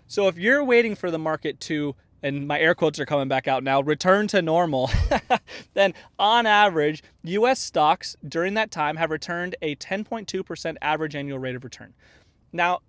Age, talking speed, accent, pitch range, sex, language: 30-49, 175 wpm, American, 150-205 Hz, male, English